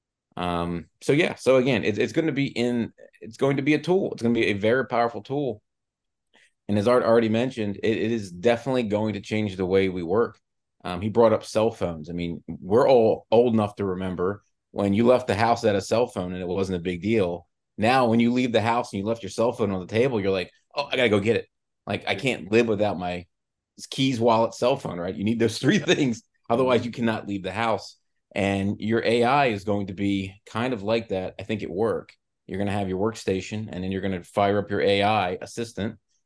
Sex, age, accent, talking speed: male, 30-49, American, 240 wpm